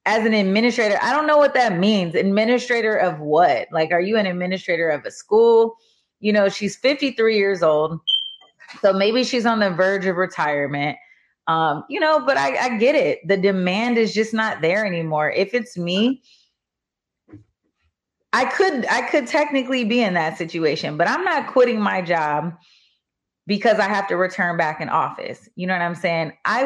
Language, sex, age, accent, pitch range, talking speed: English, female, 30-49, American, 170-230 Hz, 180 wpm